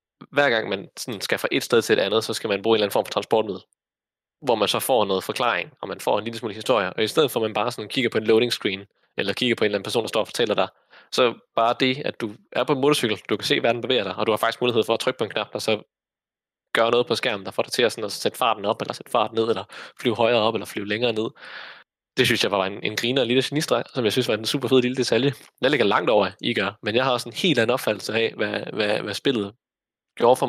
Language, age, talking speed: Danish, 20-39, 305 wpm